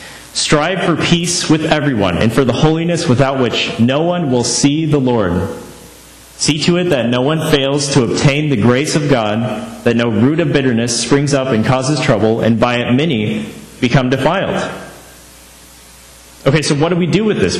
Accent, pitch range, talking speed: American, 95-145 Hz, 185 wpm